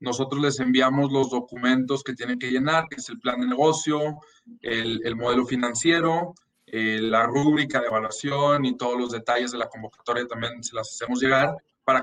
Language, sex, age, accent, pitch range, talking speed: Spanish, male, 20-39, Mexican, 125-145 Hz, 185 wpm